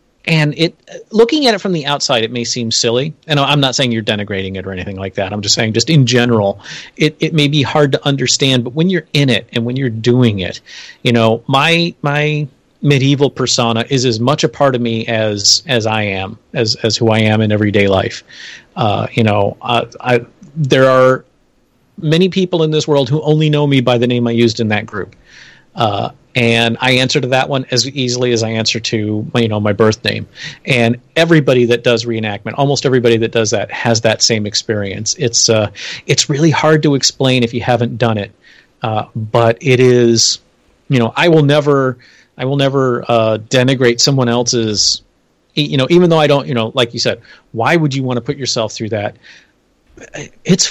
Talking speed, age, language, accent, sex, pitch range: 210 wpm, 30-49, English, American, male, 115-140 Hz